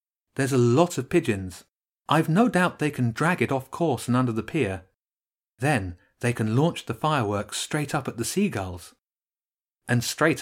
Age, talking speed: 30-49, 180 wpm